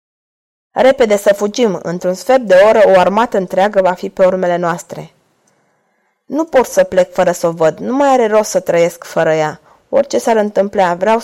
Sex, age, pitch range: female, 20-39, 180-245 Hz